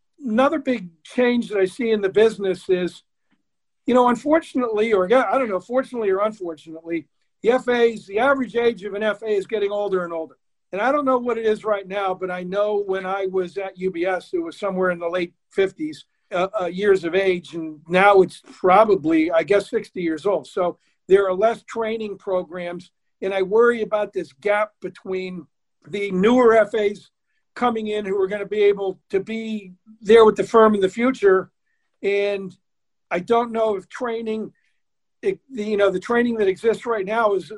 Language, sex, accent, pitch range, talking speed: English, male, American, 185-225 Hz, 195 wpm